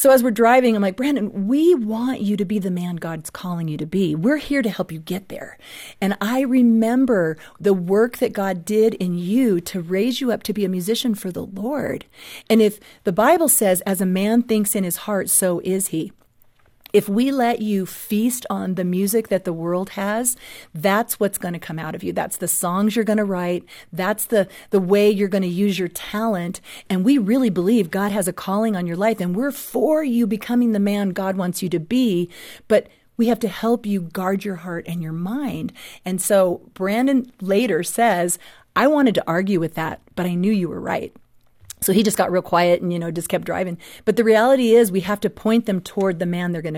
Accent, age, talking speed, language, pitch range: American, 40-59, 225 wpm, English, 185-230 Hz